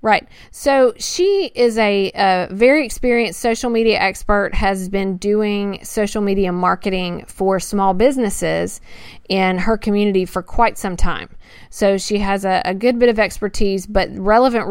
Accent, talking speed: American, 155 wpm